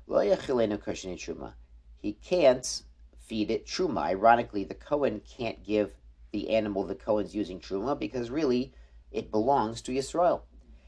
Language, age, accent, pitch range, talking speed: English, 50-69, American, 65-110 Hz, 120 wpm